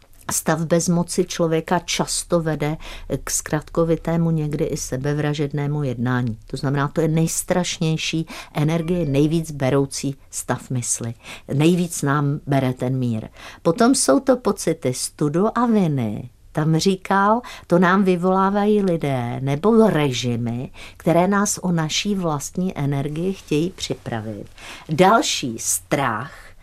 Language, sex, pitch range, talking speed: Czech, female, 140-190 Hz, 120 wpm